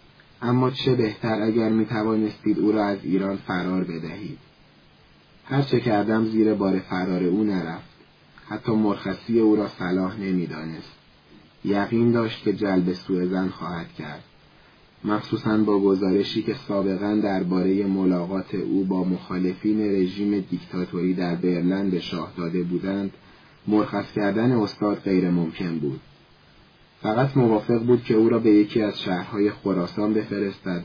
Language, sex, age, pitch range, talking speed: English, male, 30-49, 90-110 Hz, 135 wpm